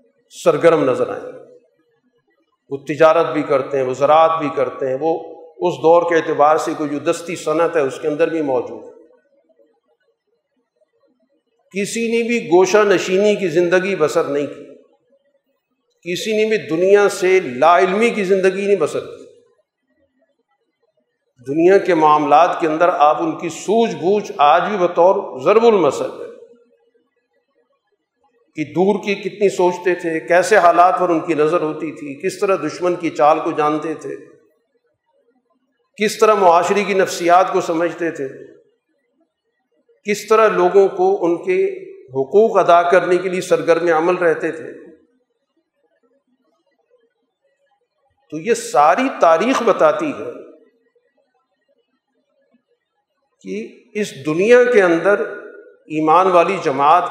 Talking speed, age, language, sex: 130 wpm, 50-69, Urdu, male